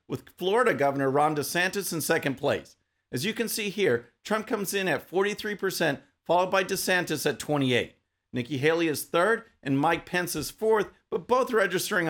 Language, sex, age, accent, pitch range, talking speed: English, male, 50-69, American, 150-210 Hz, 175 wpm